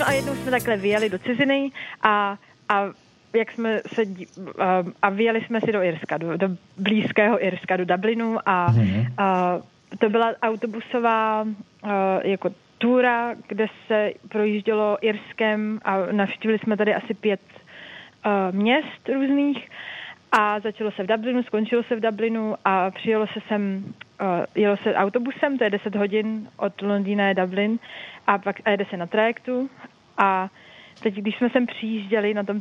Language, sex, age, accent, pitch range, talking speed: Czech, female, 30-49, native, 195-225 Hz, 150 wpm